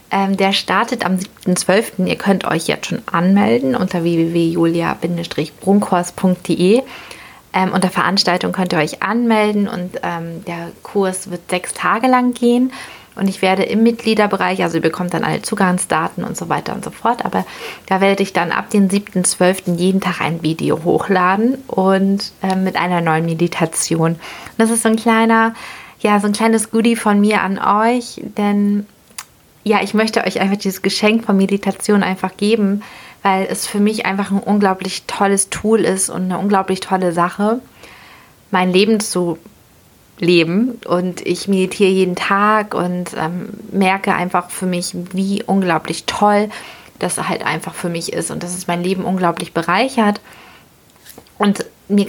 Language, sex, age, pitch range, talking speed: German, female, 30-49, 180-210 Hz, 160 wpm